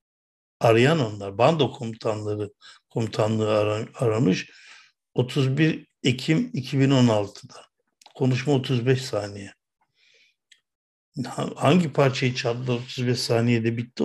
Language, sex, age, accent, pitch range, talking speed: Turkish, male, 60-79, native, 115-135 Hz, 75 wpm